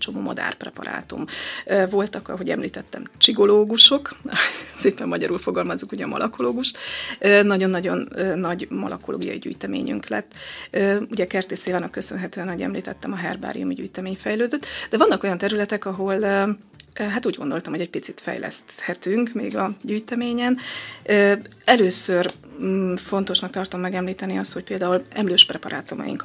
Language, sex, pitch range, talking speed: Hungarian, female, 185-210 Hz, 115 wpm